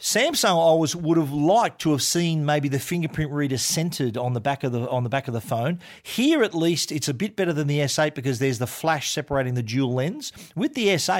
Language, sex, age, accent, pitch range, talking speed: English, male, 40-59, Australian, 135-170 Hz, 240 wpm